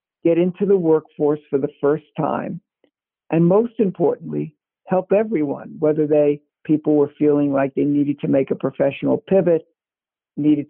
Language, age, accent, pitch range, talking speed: English, 60-79, American, 150-175 Hz, 150 wpm